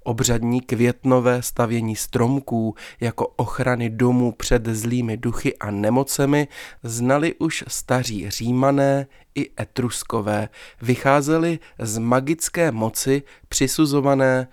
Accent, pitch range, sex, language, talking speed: native, 115-135 Hz, male, Czech, 95 wpm